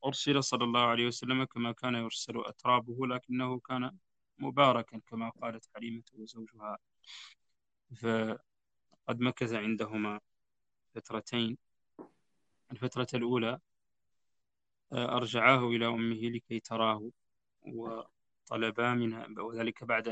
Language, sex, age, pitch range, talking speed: Arabic, male, 20-39, 110-120 Hz, 90 wpm